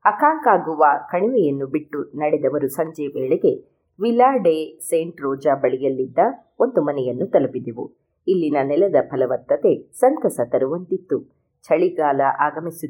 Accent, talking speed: native, 100 wpm